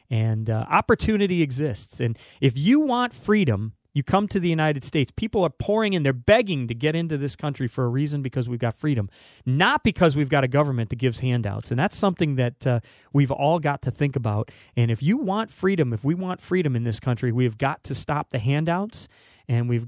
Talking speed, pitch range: 220 wpm, 120-160 Hz